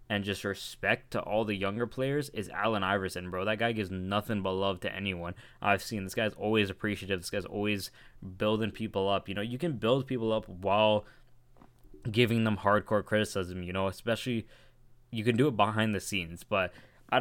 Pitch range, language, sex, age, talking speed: 100-115 Hz, English, male, 10-29, 195 wpm